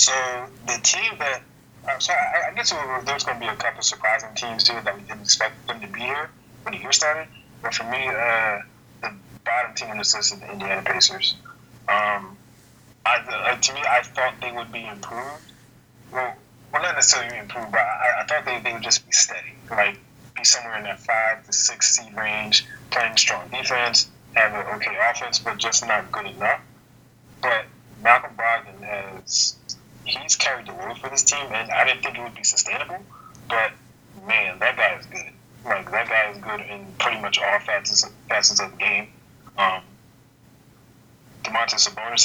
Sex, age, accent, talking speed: male, 20-39, American, 185 wpm